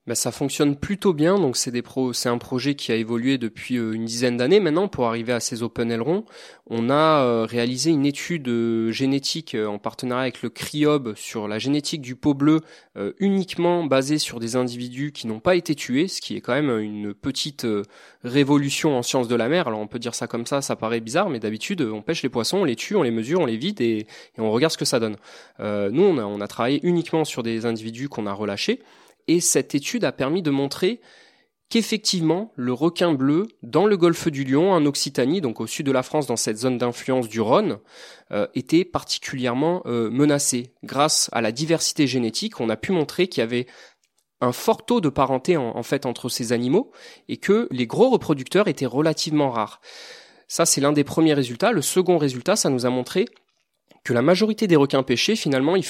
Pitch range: 120-160 Hz